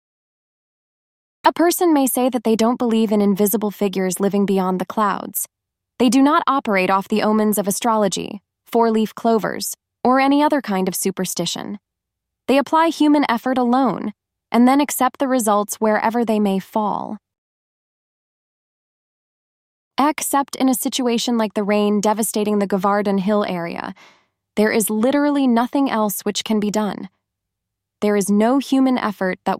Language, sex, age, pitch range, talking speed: English, female, 20-39, 200-250 Hz, 150 wpm